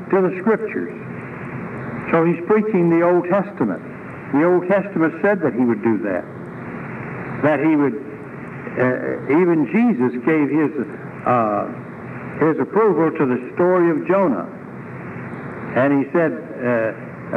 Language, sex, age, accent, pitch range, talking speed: English, male, 60-79, American, 150-195 Hz, 130 wpm